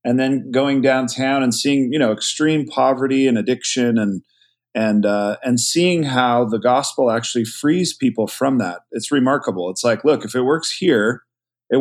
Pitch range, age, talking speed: 115-135 Hz, 40-59, 180 wpm